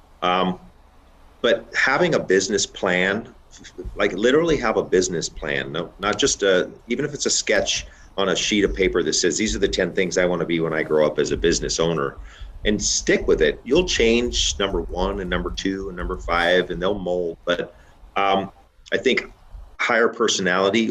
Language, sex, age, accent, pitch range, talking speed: English, male, 40-59, American, 80-95 Hz, 195 wpm